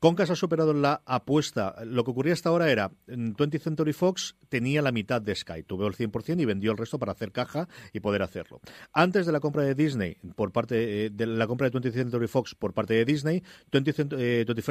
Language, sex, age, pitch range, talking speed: Spanish, male, 40-59, 110-150 Hz, 215 wpm